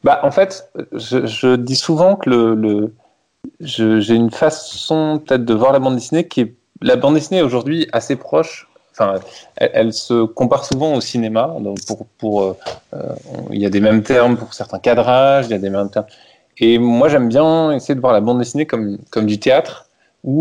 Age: 20-39